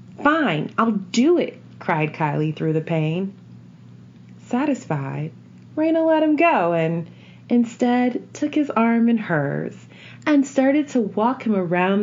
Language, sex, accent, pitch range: English, female, American, 155-255 Hz